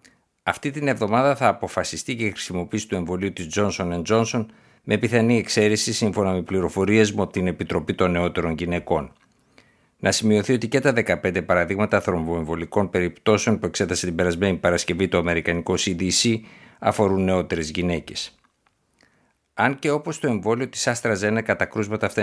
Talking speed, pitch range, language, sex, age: 150 wpm, 85-110 Hz, Greek, male, 60-79